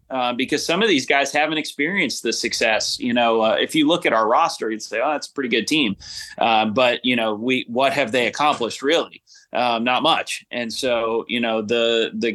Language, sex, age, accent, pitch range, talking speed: English, male, 30-49, American, 110-130 Hz, 225 wpm